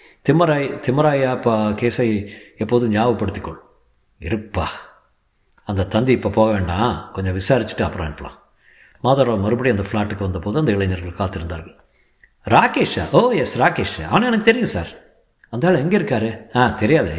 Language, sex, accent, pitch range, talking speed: Tamil, male, native, 100-145 Hz, 130 wpm